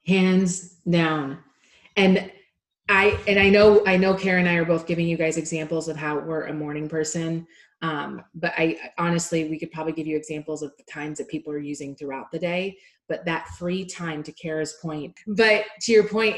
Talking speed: 200 wpm